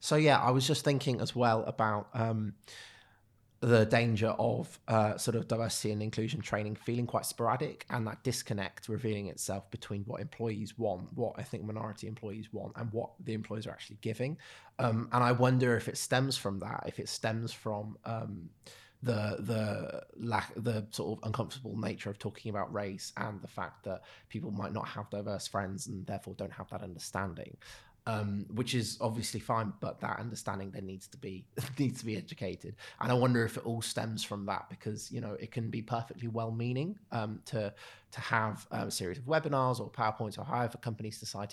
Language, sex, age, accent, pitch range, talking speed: English, male, 20-39, British, 105-120 Hz, 190 wpm